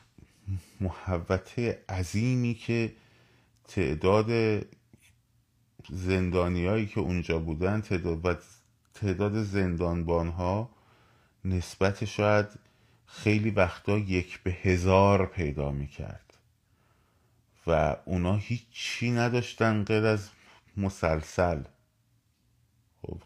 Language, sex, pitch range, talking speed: Persian, male, 90-115 Hz, 75 wpm